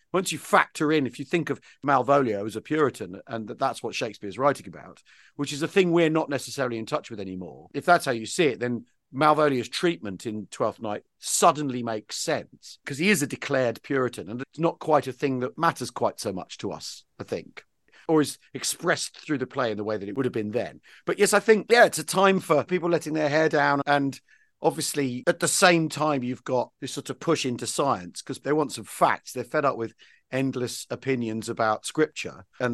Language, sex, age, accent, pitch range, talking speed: English, male, 50-69, British, 115-155 Hz, 225 wpm